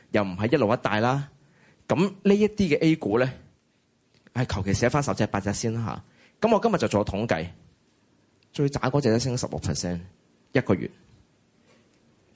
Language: Chinese